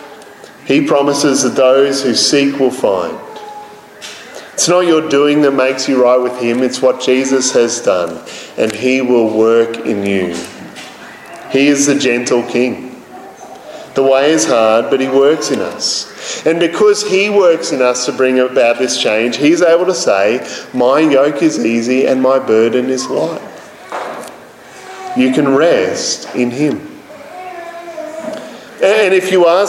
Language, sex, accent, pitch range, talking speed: English, male, Australian, 125-170 Hz, 155 wpm